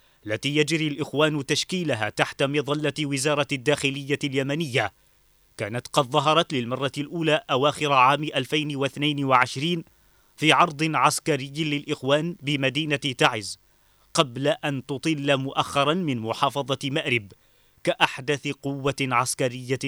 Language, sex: Arabic, male